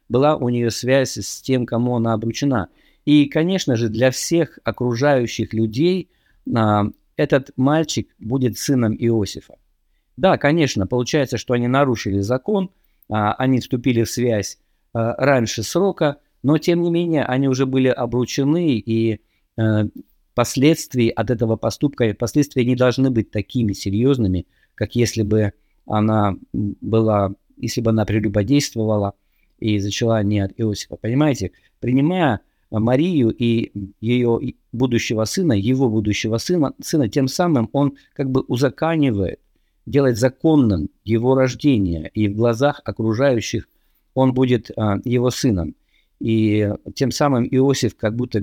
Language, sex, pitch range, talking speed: Russian, male, 105-135 Hz, 125 wpm